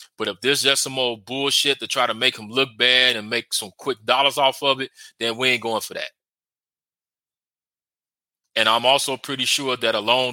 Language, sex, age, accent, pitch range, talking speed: English, male, 20-39, American, 110-130 Hz, 205 wpm